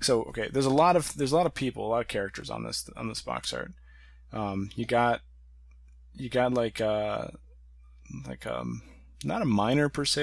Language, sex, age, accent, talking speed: English, male, 20-39, American, 205 wpm